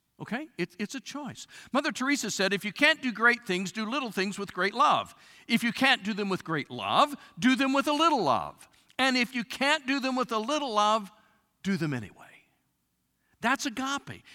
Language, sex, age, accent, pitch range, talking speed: English, male, 50-69, American, 185-250 Hz, 205 wpm